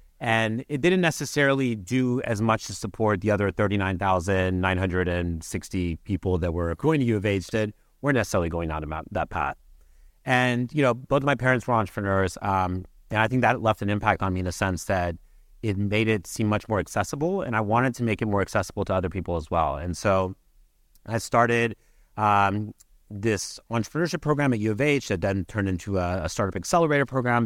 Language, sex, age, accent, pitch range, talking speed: English, male, 30-49, American, 95-120 Hz, 200 wpm